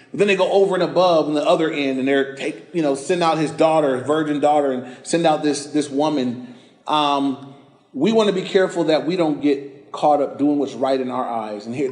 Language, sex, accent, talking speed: English, male, American, 235 wpm